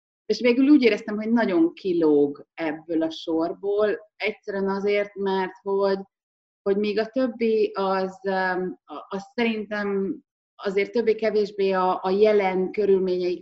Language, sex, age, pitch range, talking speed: Hungarian, female, 30-49, 155-210 Hz, 125 wpm